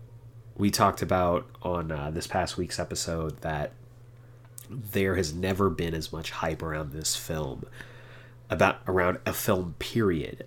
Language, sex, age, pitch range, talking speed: English, male, 30-49, 85-115 Hz, 145 wpm